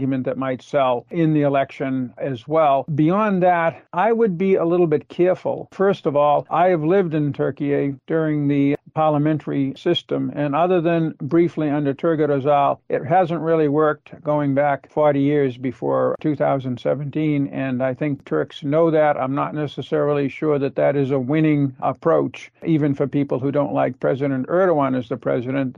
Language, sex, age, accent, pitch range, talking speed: English, male, 50-69, American, 140-165 Hz, 170 wpm